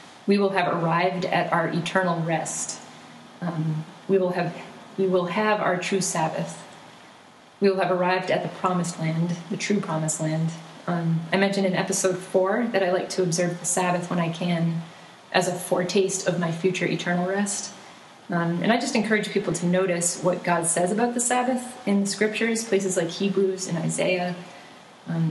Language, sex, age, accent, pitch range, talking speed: English, female, 30-49, American, 170-195 Hz, 185 wpm